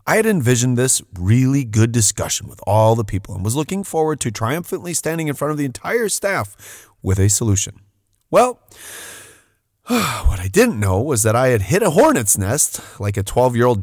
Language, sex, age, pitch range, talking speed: English, male, 30-49, 100-145 Hz, 185 wpm